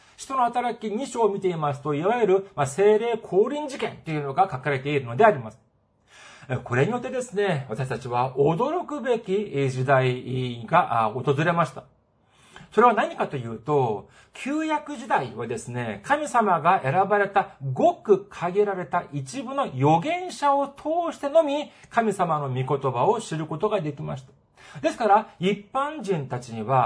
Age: 40-59